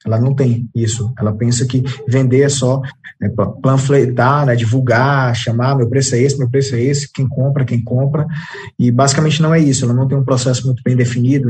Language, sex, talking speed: English, male, 210 wpm